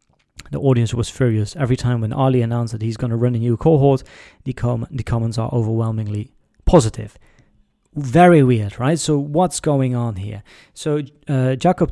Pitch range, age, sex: 120-150 Hz, 30-49, male